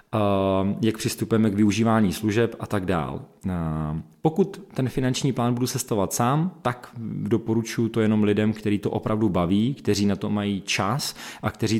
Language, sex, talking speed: Czech, male, 160 wpm